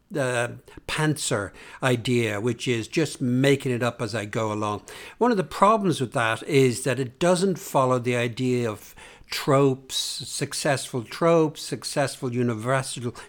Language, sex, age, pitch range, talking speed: English, male, 60-79, 120-155 Hz, 145 wpm